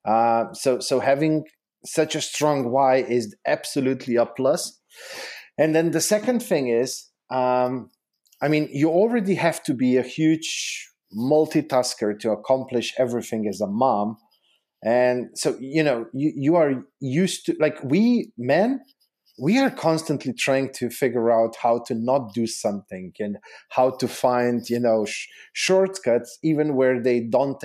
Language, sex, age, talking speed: English, male, 40-59, 155 wpm